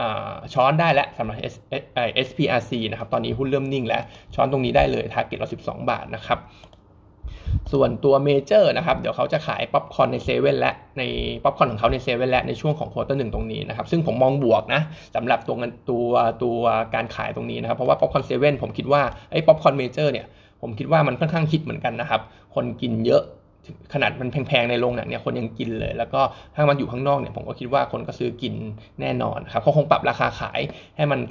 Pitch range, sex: 115-145 Hz, male